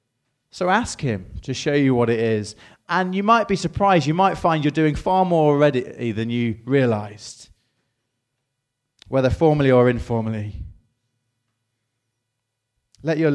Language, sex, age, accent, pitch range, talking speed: English, male, 30-49, British, 115-150 Hz, 140 wpm